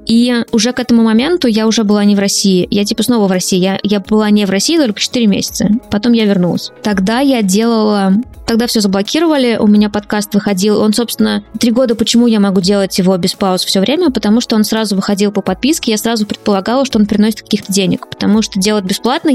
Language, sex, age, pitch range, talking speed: Russian, female, 20-39, 200-230 Hz, 215 wpm